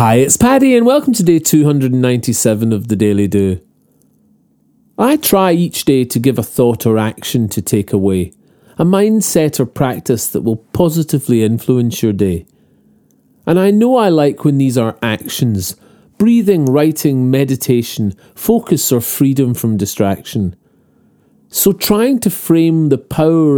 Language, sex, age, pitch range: English, male, 40-59, 115-160 Hz